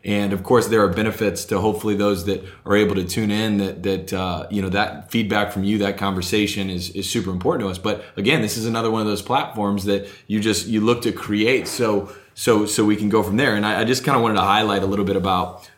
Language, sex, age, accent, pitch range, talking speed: English, male, 20-39, American, 95-105 Hz, 265 wpm